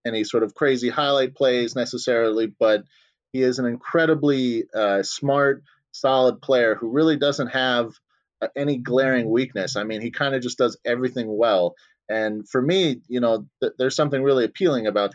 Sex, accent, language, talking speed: male, American, English, 165 wpm